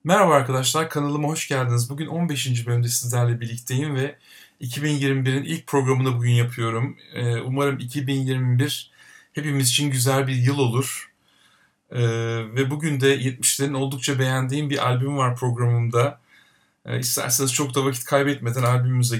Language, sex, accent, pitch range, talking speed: Turkish, male, native, 125-145 Hz, 125 wpm